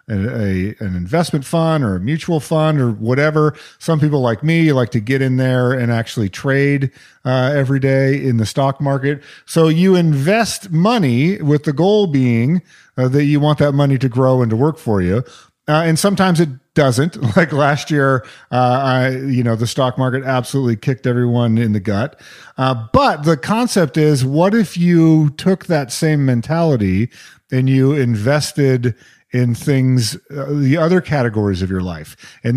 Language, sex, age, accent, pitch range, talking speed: English, male, 40-59, American, 125-155 Hz, 180 wpm